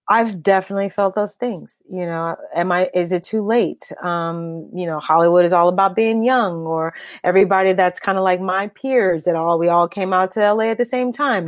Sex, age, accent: female, 30-49, American